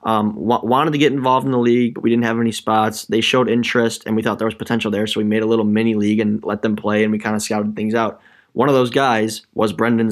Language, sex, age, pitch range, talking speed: English, male, 10-29, 110-120 Hz, 290 wpm